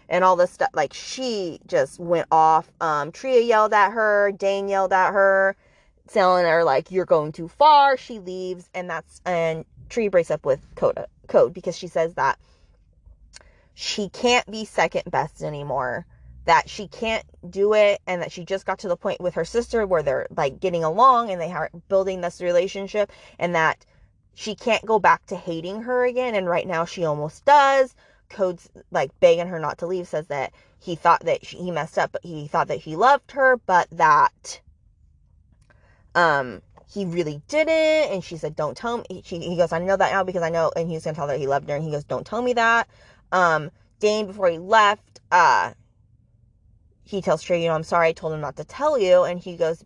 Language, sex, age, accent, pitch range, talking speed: English, female, 20-39, American, 160-210 Hz, 210 wpm